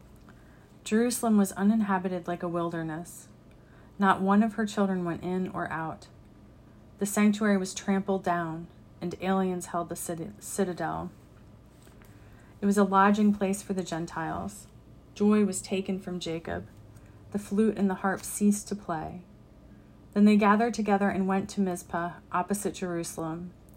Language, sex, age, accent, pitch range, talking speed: English, female, 30-49, American, 170-200 Hz, 140 wpm